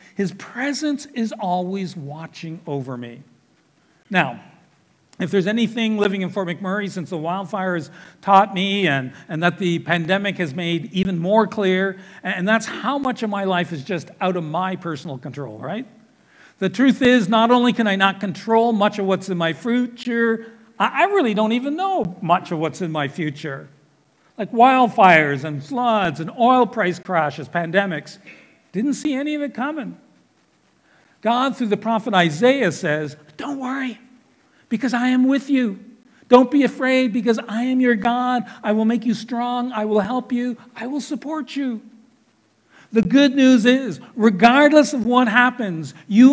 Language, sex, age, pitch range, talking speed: English, male, 60-79, 185-245 Hz, 170 wpm